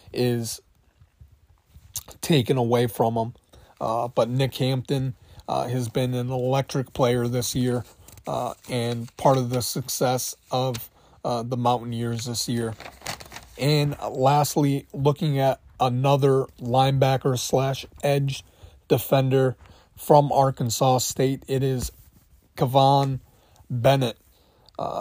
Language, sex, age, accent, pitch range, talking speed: English, male, 30-49, American, 115-135 Hz, 110 wpm